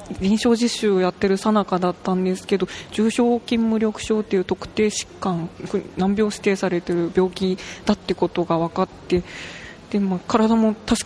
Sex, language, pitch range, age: female, Japanese, 180-215 Hz, 20-39